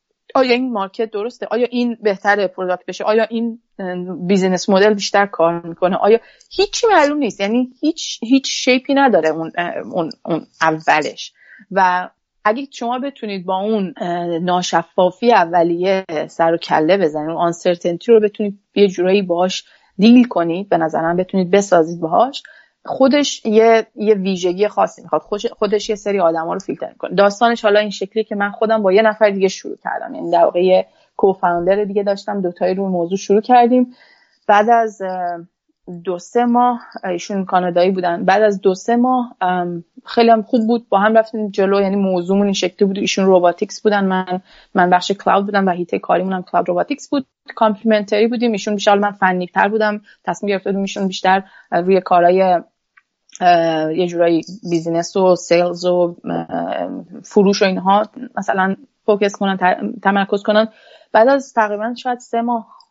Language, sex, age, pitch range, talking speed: Persian, female, 30-49, 180-225 Hz, 160 wpm